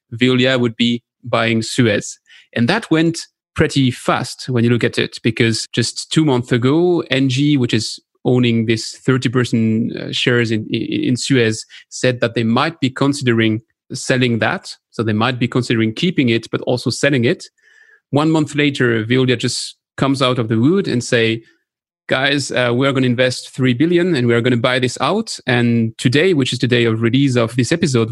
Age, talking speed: 30-49, 190 wpm